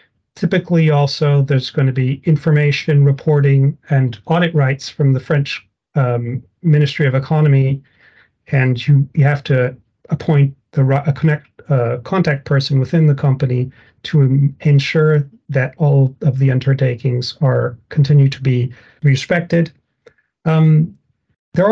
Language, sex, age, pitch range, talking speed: English, male, 40-59, 130-155 Hz, 130 wpm